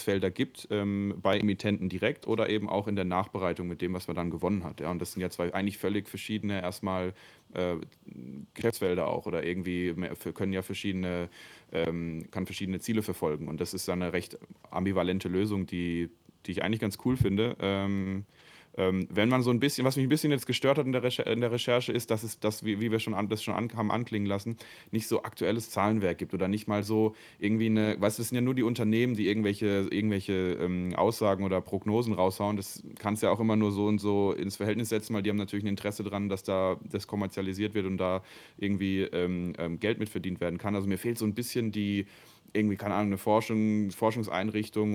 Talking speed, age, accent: 220 wpm, 30-49, German